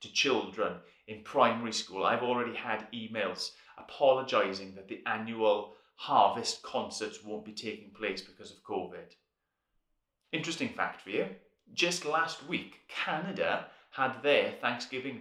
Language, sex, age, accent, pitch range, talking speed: English, male, 30-49, British, 105-160 Hz, 130 wpm